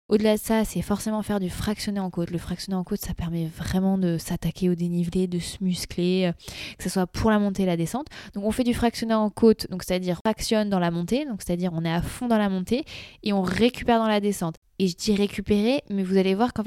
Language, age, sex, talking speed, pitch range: French, 20-39, female, 255 wpm, 180-215 Hz